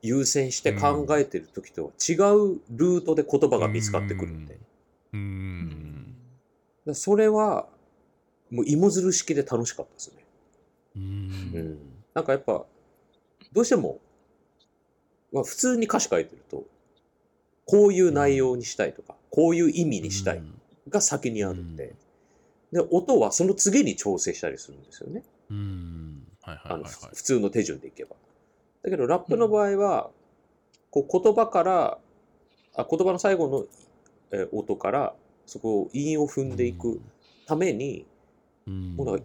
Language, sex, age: Japanese, male, 40-59